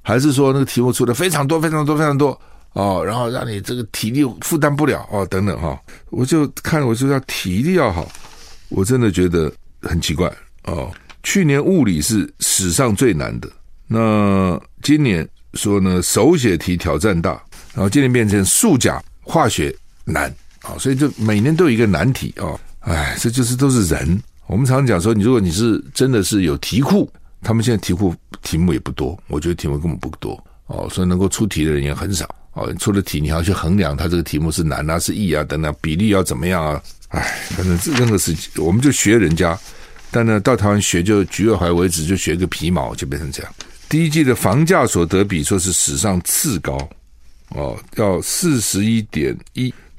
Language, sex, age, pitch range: Chinese, male, 60-79, 85-125 Hz